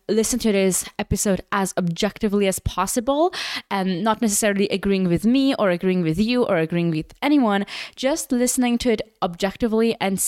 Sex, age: female, 20-39